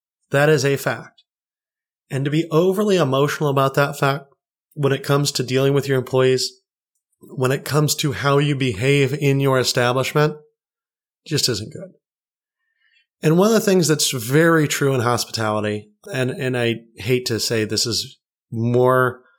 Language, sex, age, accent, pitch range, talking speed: English, male, 20-39, American, 125-170 Hz, 160 wpm